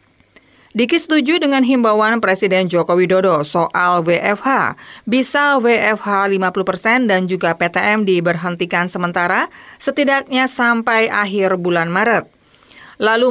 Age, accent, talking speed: 30-49, native, 105 wpm